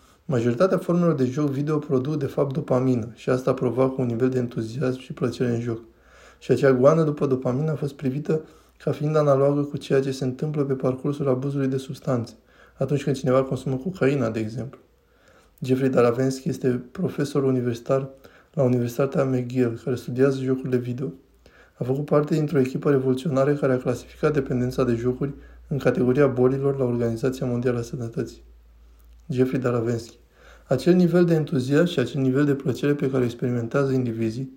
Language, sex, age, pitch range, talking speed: Romanian, male, 20-39, 125-145 Hz, 165 wpm